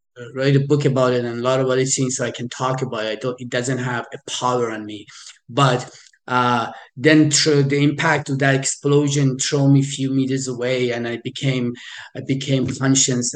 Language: English